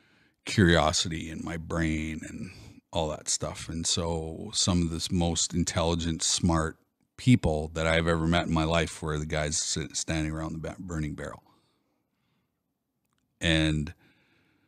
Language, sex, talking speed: English, male, 135 wpm